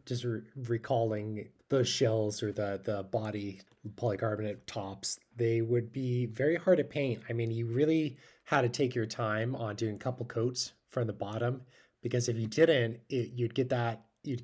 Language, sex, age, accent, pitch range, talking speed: English, male, 20-39, American, 115-140 Hz, 185 wpm